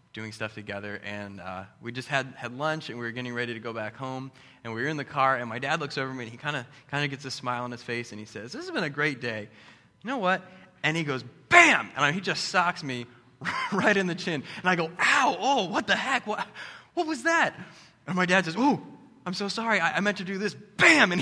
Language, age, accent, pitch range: English, 20-39, American, 130-200 Hz